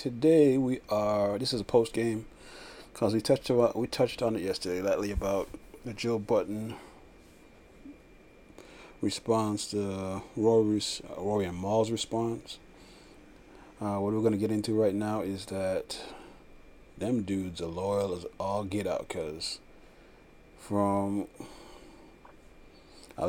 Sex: male